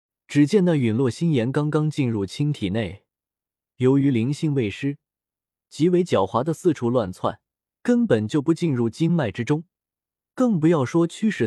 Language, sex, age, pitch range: Chinese, male, 20-39, 110-160 Hz